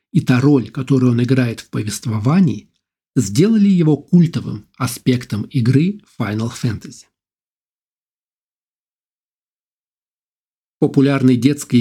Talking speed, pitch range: 90 wpm, 125-155 Hz